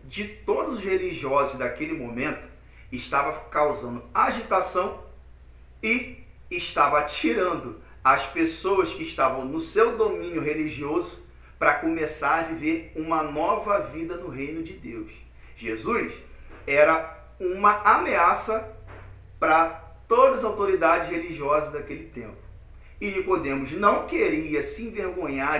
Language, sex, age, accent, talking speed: Portuguese, male, 40-59, Brazilian, 115 wpm